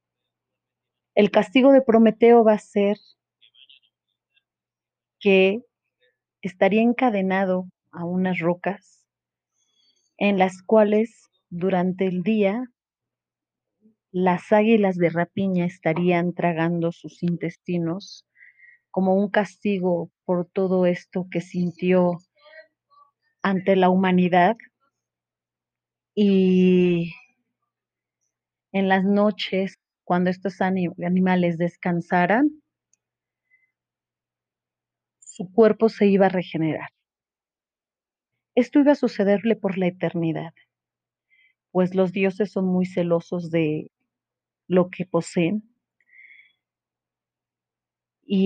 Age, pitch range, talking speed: 30-49, 175-210 Hz, 85 wpm